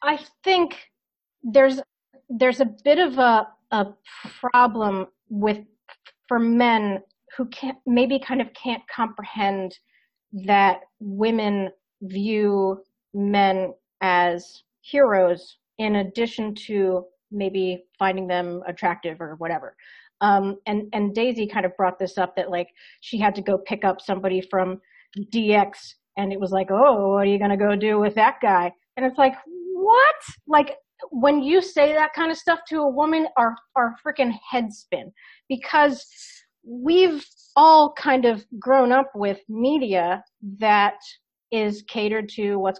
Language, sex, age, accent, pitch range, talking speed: English, female, 30-49, American, 195-255 Hz, 145 wpm